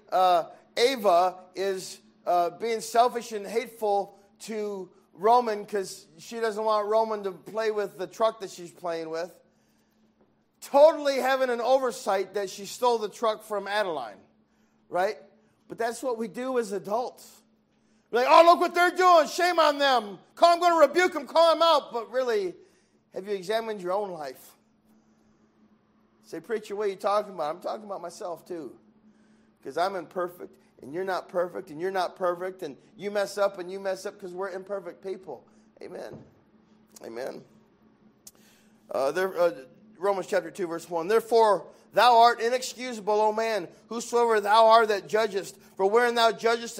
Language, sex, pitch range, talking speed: English, male, 195-235 Hz, 165 wpm